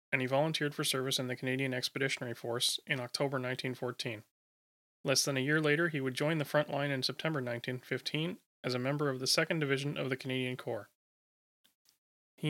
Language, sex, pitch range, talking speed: English, male, 130-150 Hz, 185 wpm